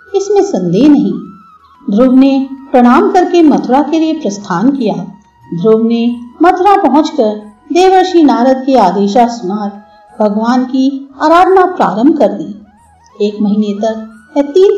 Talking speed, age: 120 wpm, 50-69